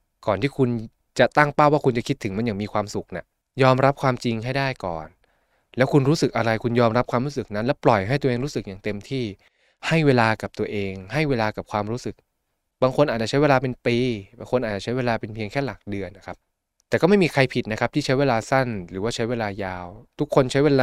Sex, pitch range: male, 105-135 Hz